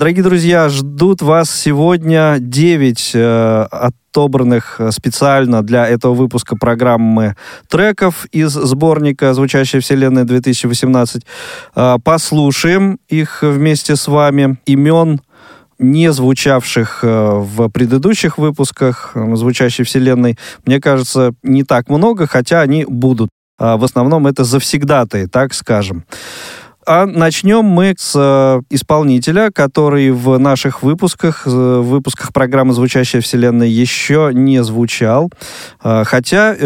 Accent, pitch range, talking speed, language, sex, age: native, 120-150 Hz, 110 wpm, Russian, male, 20-39